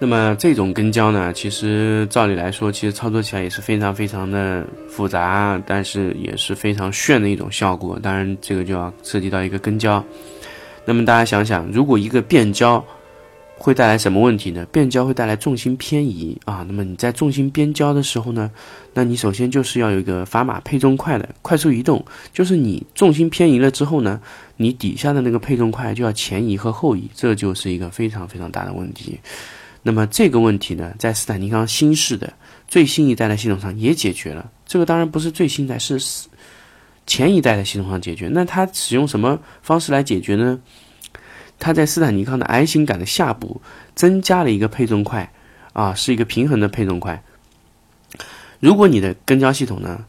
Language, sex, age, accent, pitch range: Chinese, male, 20-39, native, 100-135 Hz